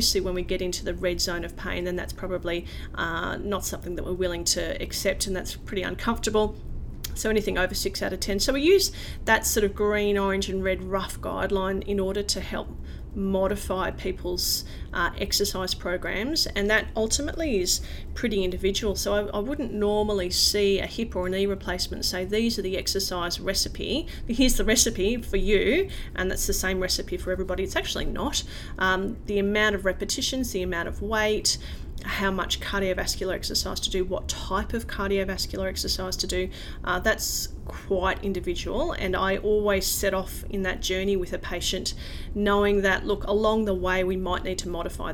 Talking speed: 185 wpm